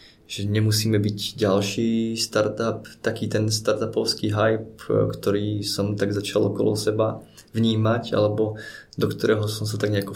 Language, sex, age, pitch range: Slovak, male, 20-39, 100-110 Hz